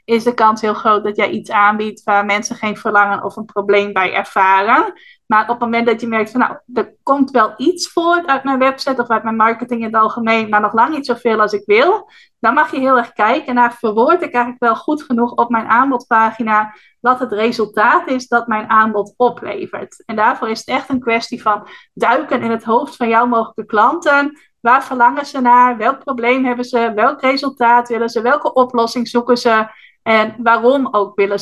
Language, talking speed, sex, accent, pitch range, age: Dutch, 210 wpm, female, Dutch, 215-255 Hz, 20-39